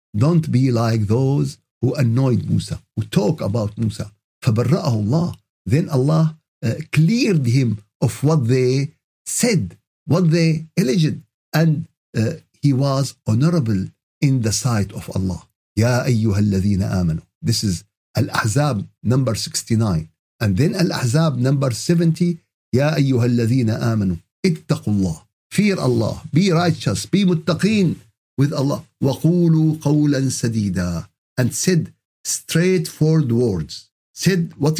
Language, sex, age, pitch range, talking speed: Arabic, male, 50-69, 120-170 Hz, 115 wpm